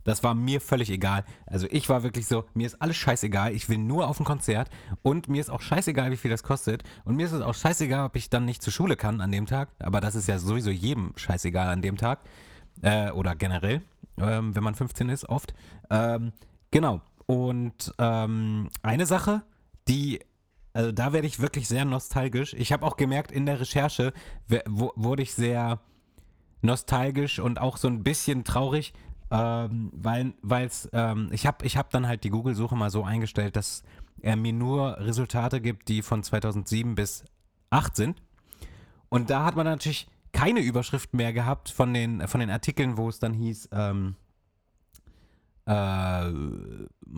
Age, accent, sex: 30-49, German, male